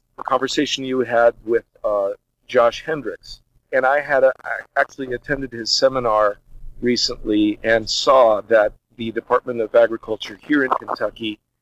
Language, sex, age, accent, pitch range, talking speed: English, male, 50-69, American, 115-135 Hz, 130 wpm